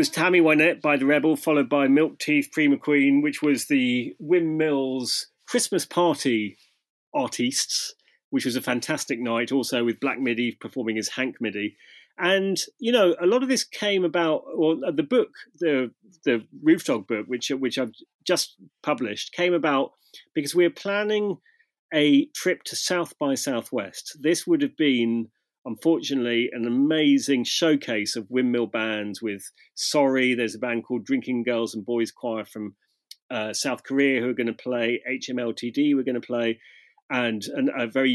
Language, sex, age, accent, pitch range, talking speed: English, male, 30-49, British, 120-180 Hz, 170 wpm